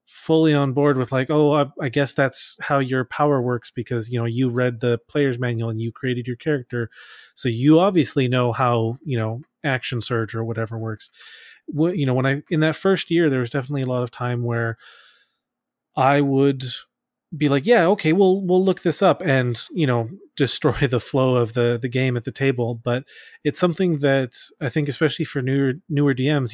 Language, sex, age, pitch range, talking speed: English, male, 30-49, 125-155 Hz, 205 wpm